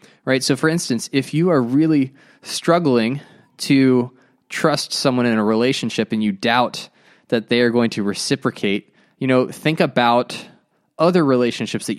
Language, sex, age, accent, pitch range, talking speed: English, male, 20-39, American, 115-160 Hz, 155 wpm